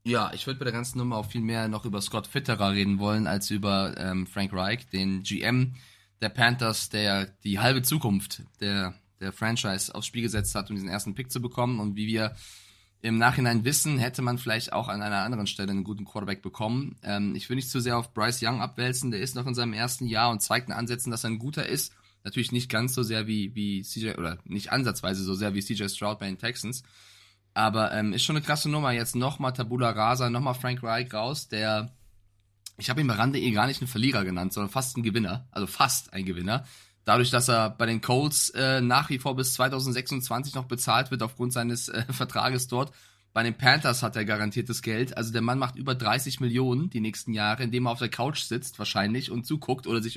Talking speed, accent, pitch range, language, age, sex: 225 wpm, German, 105-125 Hz, German, 20-39, male